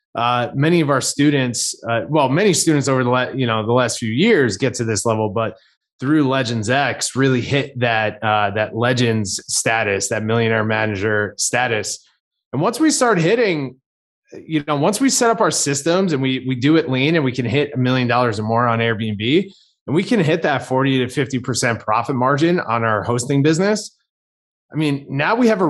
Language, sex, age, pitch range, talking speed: English, male, 20-39, 115-145 Hz, 205 wpm